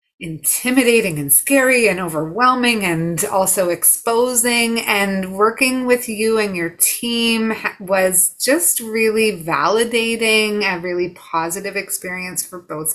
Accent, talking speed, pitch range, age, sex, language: American, 115 wpm, 165-220 Hz, 30-49, female, English